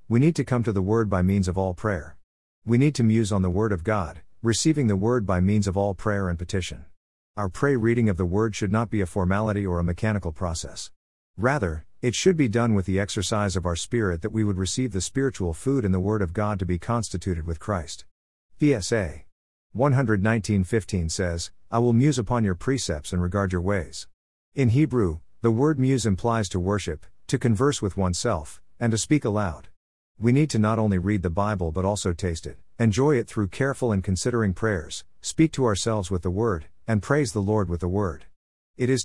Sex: male